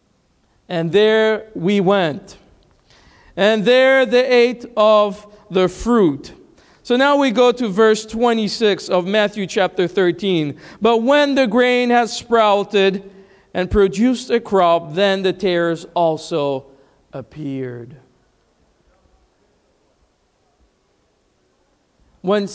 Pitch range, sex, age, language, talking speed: 170-240 Hz, male, 50-69, English, 100 wpm